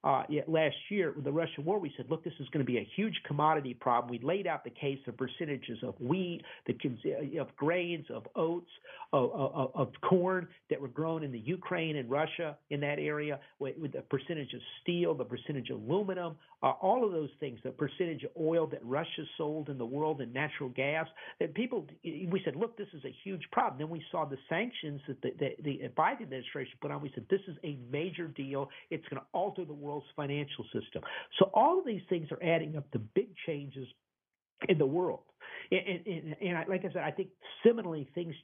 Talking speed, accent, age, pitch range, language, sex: 215 wpm, American, 50-69, 135-170 Hz, English, male